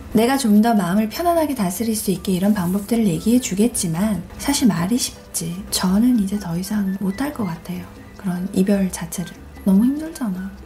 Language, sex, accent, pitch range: Korean, female, native, 190-255 Hz